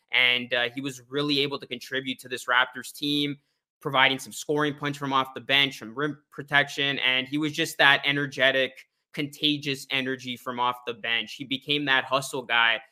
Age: 20-39